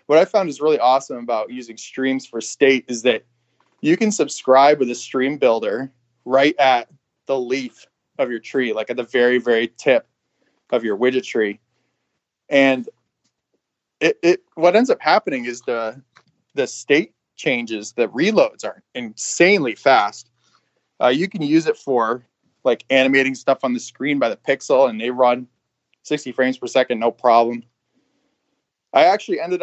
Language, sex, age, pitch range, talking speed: English, male, 20-39, 115-135 Hz, 165 wpm